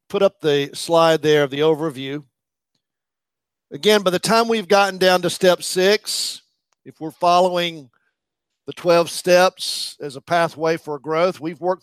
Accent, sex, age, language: American, male, 50-69, English